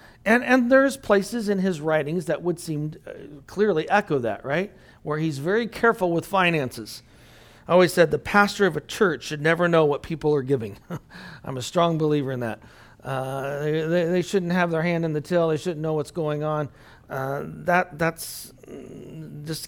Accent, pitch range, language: American, 150-200 Hz, English